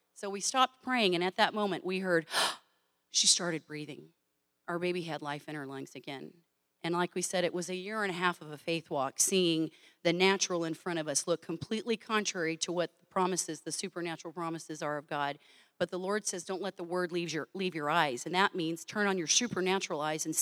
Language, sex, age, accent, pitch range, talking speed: English, female, 40-59, American, 160-215 Hz, 230 wpm